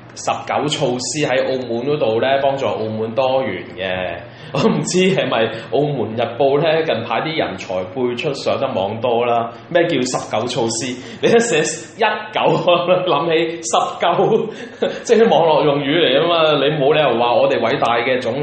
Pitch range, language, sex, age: 120-160 Hz, Chinese, male, 20-39